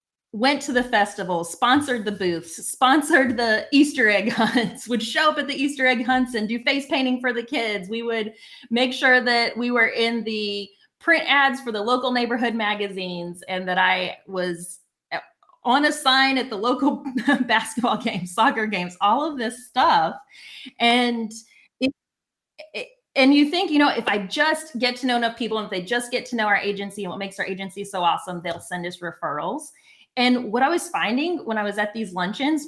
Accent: American